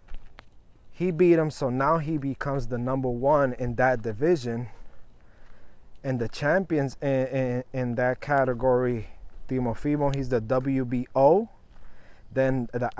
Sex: male